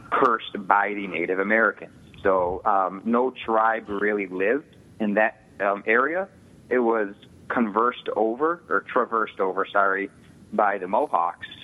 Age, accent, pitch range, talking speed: 30-49, American, 95-110 Hz, 135 wpm